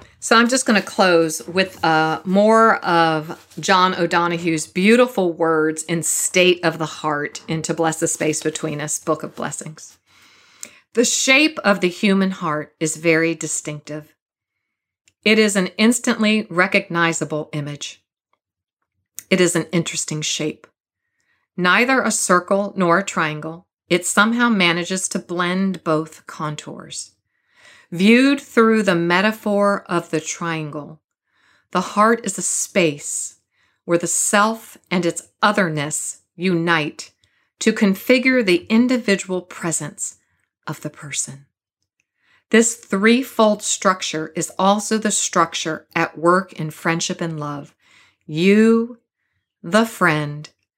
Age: 40-59